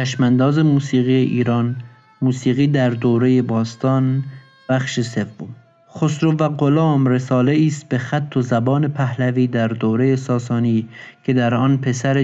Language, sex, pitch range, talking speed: Persian, male, 115-135 Hz, 130 wpm